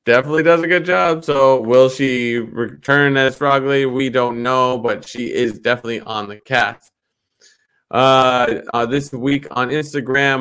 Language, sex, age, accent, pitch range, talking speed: English, male, 20-39, American, 115-135 Hz, 155 wpm